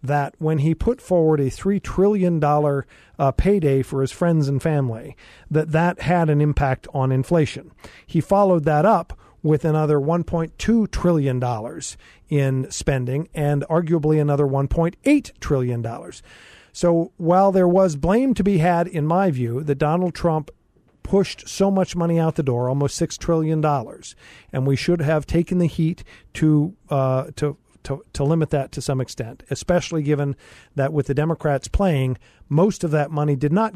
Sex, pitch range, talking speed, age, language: male, 135-165 Hz, 160 wpm, 50-69, English